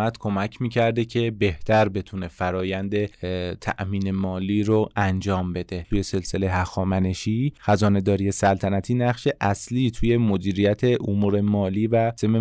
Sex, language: male, Persian